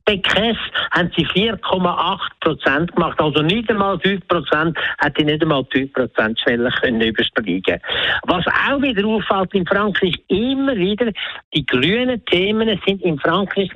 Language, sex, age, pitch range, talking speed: German, male, 60-79, 145-200 Hz, 125 wpm